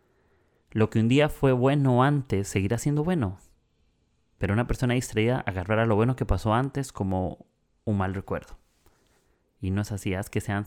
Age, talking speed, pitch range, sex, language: 30-49, 175 wpm, 95-115 Hz, male, Spanish